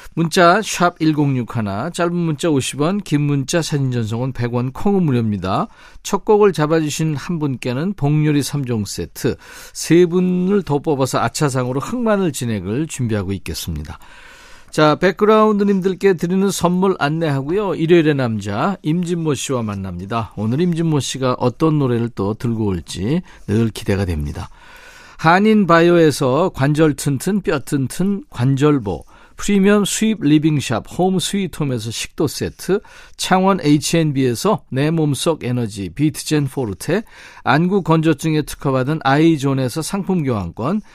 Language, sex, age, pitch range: Korean, male, 50-69, 130-175 Hz